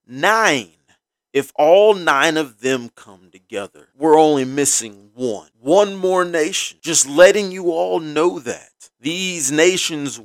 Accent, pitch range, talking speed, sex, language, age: American, 135-195 Hz, 135 wpm, male, English, 30-49